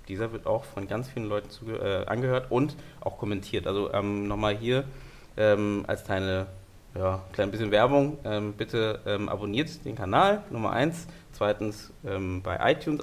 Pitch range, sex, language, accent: 100-130 Hz, male, German, German